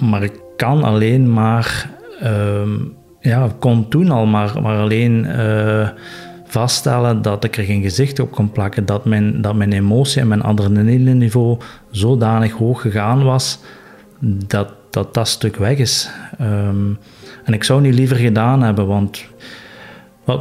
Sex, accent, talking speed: male, Dutch, 155 wpm